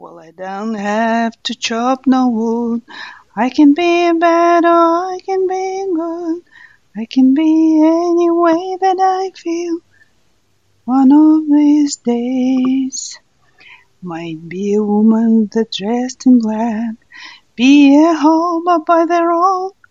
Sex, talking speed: female, 130 wpm